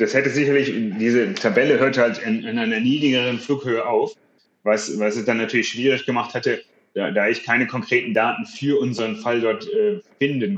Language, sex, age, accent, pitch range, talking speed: German, male, 30-49, German, 105-145 Hz, 185 wpm